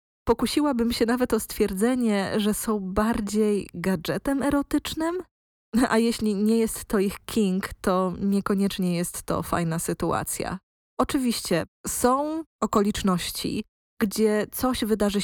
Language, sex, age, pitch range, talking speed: Polish, female, 20-39, 185-235 Hz, 115 wpm